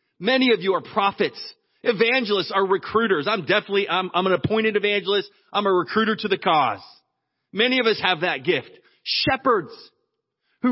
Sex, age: male, 30-49